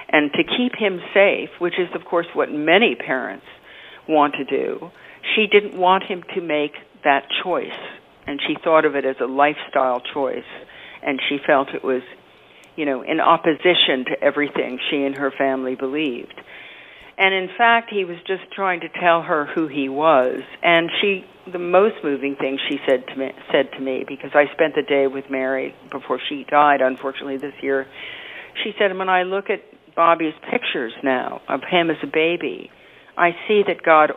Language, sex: English, female